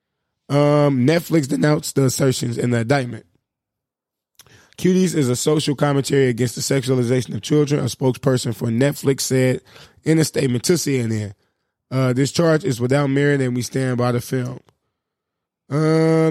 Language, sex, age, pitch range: English, male, 20-39, 130-150 Hz